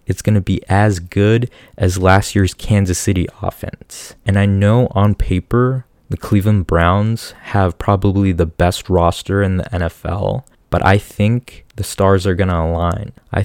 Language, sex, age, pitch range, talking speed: English, male, 20-39, 90-105 Hz, 170 wpm